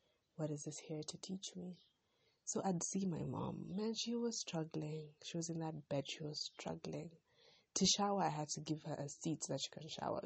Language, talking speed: English, 220 wpm